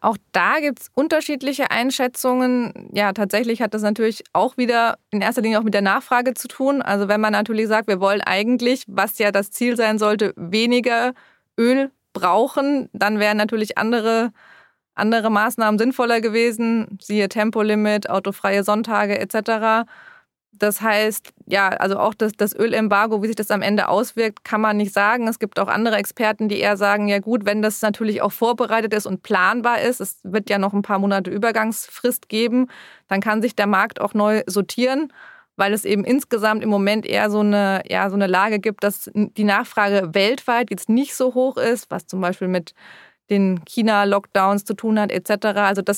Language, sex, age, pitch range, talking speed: German, female, 20-39, 205-235 Hz, 180 wpm